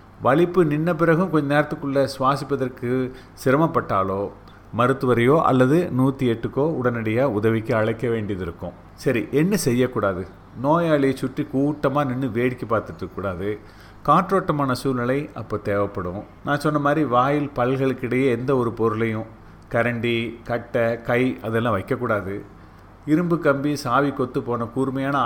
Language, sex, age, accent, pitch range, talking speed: Tamil, male, 30-49, native, 110-145 Hz, 115 wpm